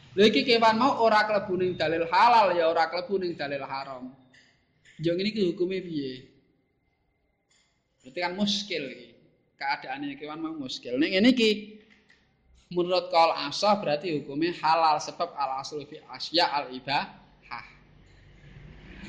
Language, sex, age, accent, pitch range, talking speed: Indonesian, male, 20-39, native, 140-195 Hz, 125 wpm